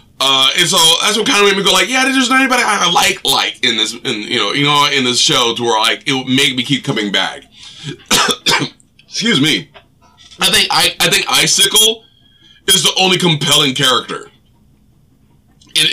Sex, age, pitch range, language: male, 20-39, 125-165 Hz, English